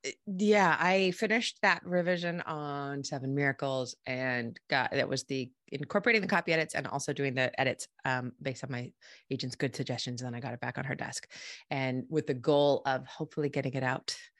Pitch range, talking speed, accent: 135-190 Hz, 195 wpm, American